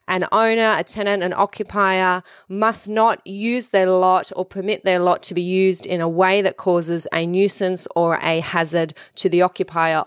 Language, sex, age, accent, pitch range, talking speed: English, female, 30-49, Australian, 165-190 Hz, 185 wpm